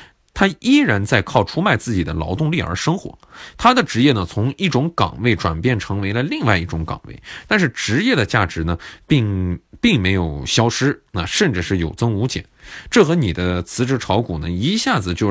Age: 20-39